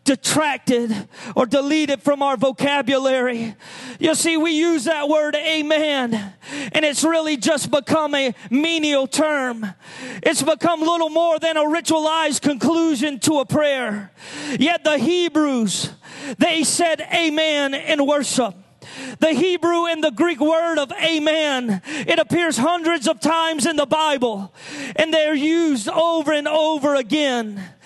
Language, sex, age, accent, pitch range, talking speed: English, male, 40-59, American, 275-330 Hz, 135 wpm